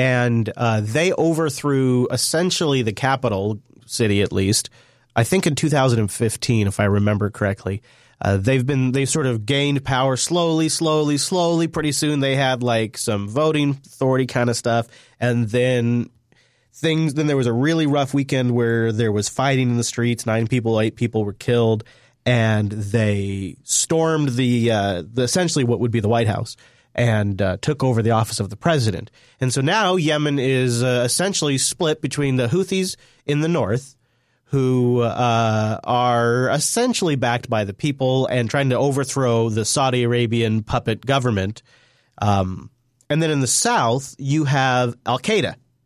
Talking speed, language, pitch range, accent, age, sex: 165 wpm, English, 115-140 Hz, American, 30-49, male